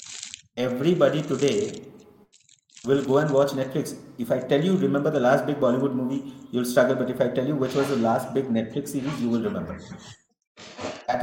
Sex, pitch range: male, 125-150 Hz